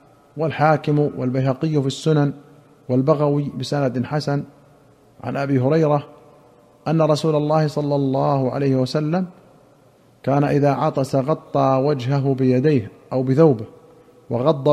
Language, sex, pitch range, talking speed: Arabic, male, 130-155 Hz, 105 wpm